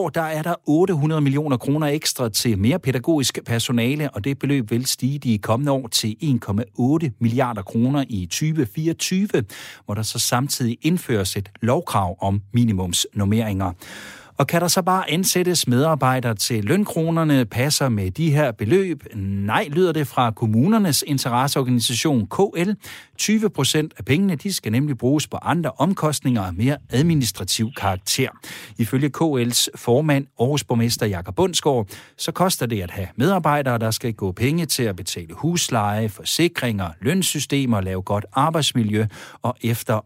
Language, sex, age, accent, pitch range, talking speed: Danish, male, 60-79, native, 115-155 Hz, 145 wpm